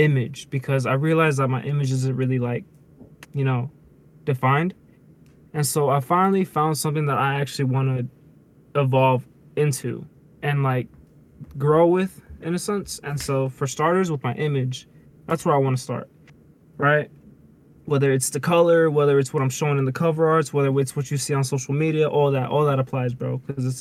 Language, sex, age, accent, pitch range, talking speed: English, male, 20-39, American, 130-150 Hz, 190 wpm